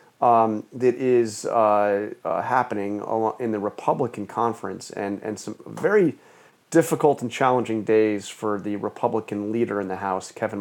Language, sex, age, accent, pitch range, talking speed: English, male, 30-49, American, 105-125 Hz, 145 wpm